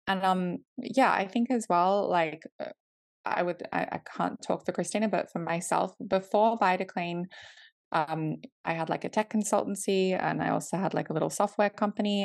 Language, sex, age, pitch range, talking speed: English, female, 20-39, 165-215 Hz, 180 wpm